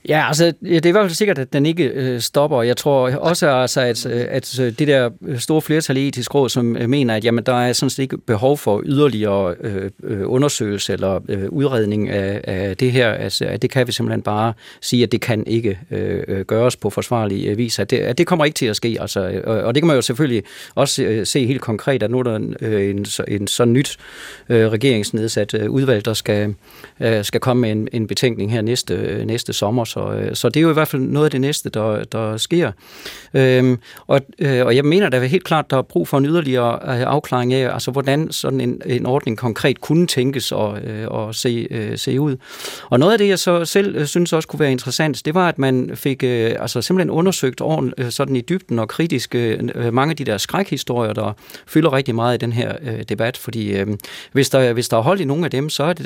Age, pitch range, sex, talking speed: 40-59, 110-140 Hz, male, 235 wpm